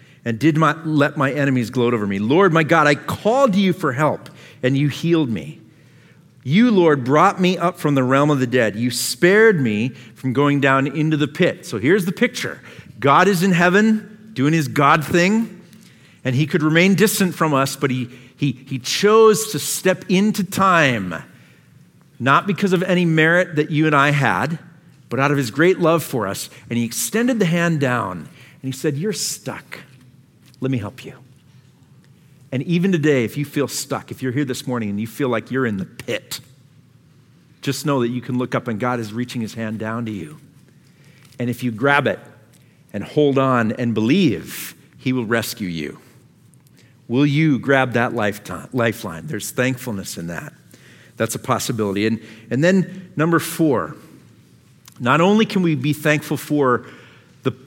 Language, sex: English, male